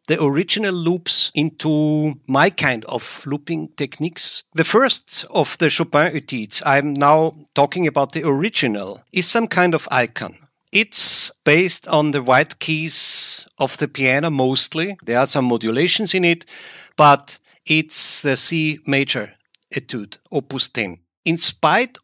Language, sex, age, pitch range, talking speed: English, male, 50-69, 135-170 Hz, 140 wpm